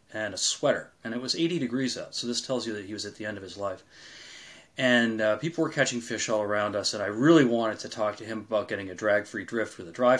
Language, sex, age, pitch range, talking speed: English, male, 30-49, 110-125 Hz, 275 wpm